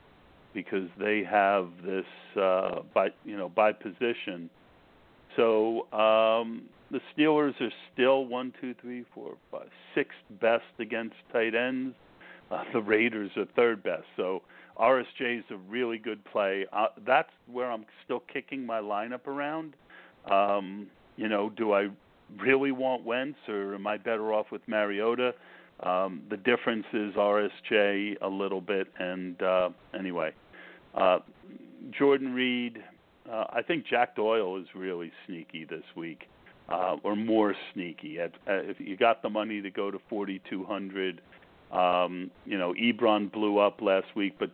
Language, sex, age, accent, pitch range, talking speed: English, male, 50-69, American, 95-115 Hz, 150 wpm